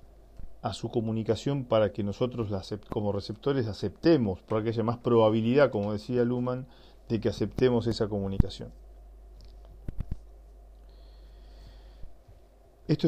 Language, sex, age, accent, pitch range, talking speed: Spanish, male, 40-59, Argentinian, 105-130 Hz, 105 wpm